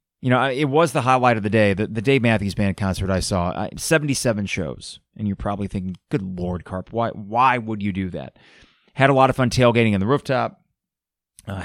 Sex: male